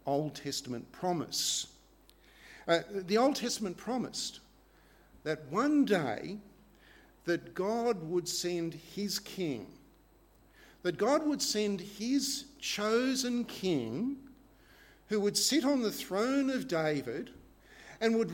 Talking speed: 110 wpm